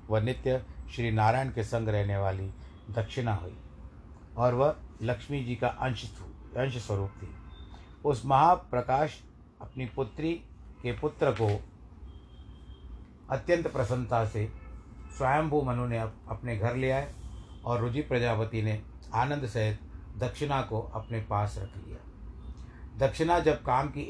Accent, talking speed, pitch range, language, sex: native, 130 wpm, 95-130 Hz, Hindi, male